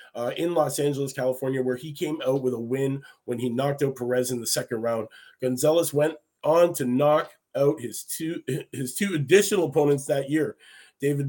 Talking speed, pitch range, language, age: 190 wpm, 130-155 Hz, English, 30-49